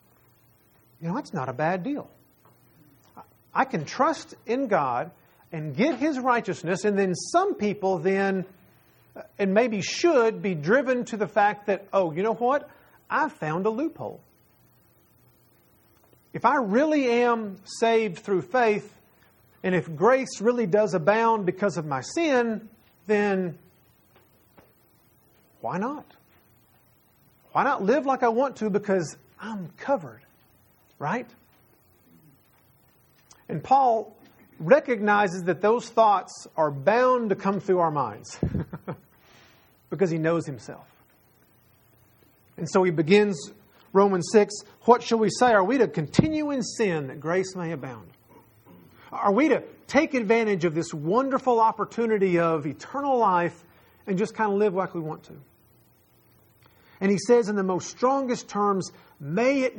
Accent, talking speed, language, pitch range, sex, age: American, 140 wpm, English, 180-235 Hz, male, 40-59